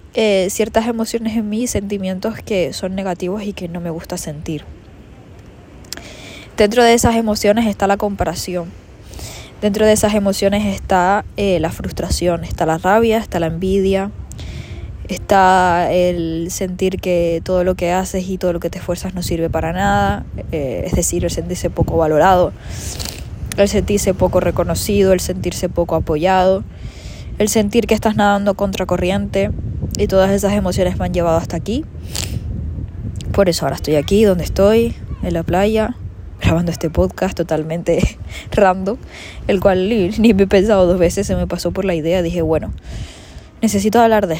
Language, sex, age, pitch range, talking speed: Spanish, female, 20-39, 170-200 Hz, 160 wpm